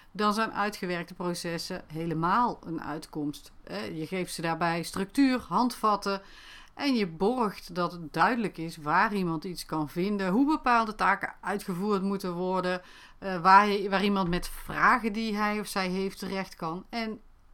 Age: 40-59